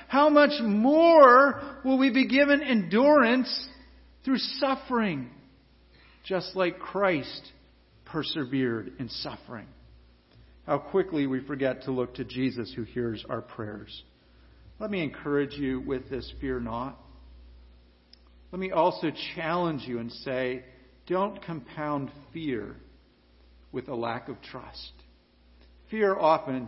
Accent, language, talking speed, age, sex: American, English, 120 wpm, 50-69, male